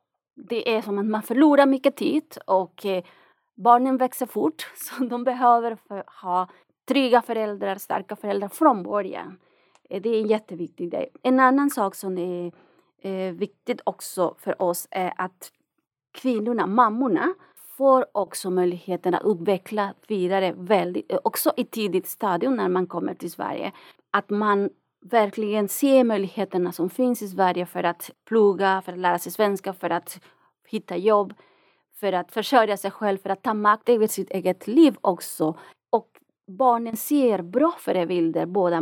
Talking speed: 150 wpm